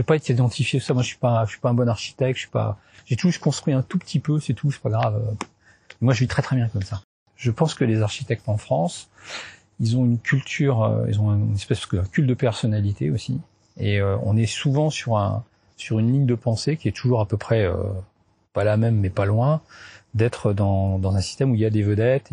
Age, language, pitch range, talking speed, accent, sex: 40-59, French, 105-135 Hz, 245 wpm, French, male